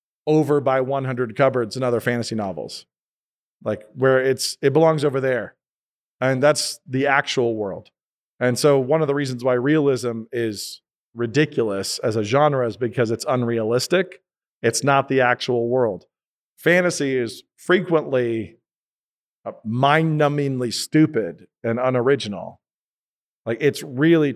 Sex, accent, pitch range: male, American, 120-145 Hz